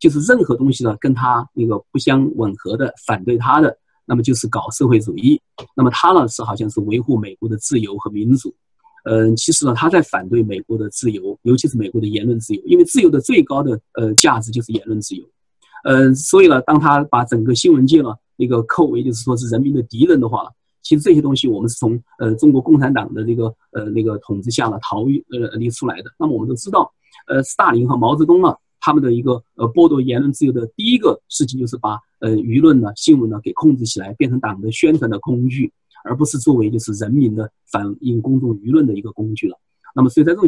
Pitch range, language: 110-140 Hz, Chinese